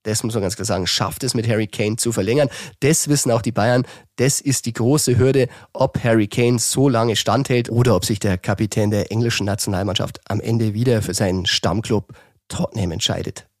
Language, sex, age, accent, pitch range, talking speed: German, male, 30-49, German, 100-130 Hz, 200 wpm